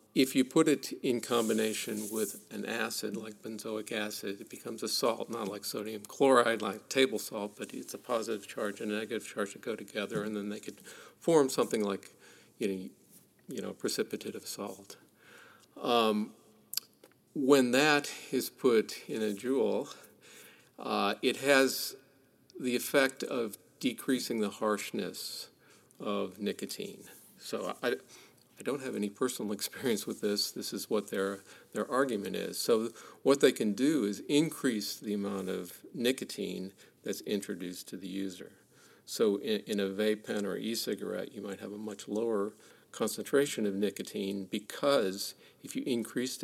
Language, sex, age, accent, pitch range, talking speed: English, male, 50-69, American, 100-120 Hz, 160 wpm